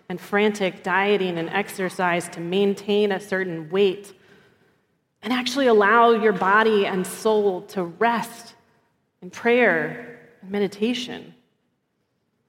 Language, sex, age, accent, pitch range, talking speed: English, female, 30-49, American, 185-225 Hz, 110 wpm